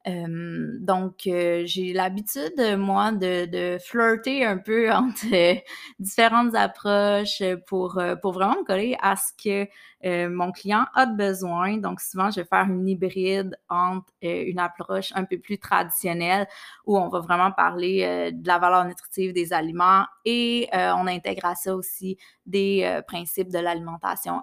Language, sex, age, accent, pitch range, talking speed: French, female, 20-39, Canadian, 180-215 Hz, 165 wpm